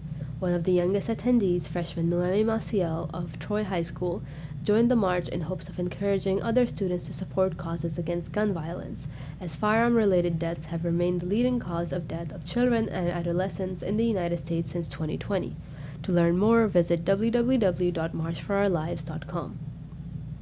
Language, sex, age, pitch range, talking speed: English, female, 20-39, 165-195 Hz, 155 wpm